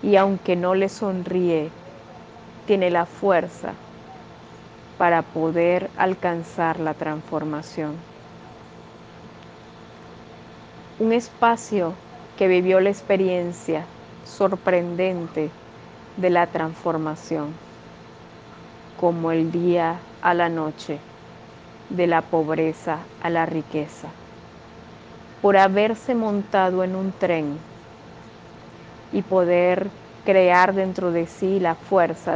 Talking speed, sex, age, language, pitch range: 90 wpm, female, 30-49, Spanish, 165-200 Hz